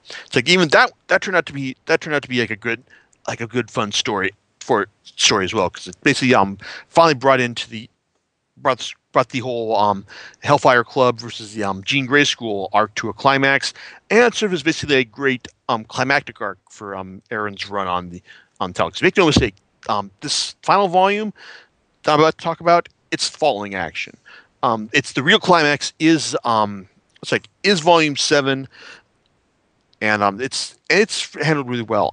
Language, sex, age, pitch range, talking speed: English, male, 40-59, 110-165 Hz, 195 wpm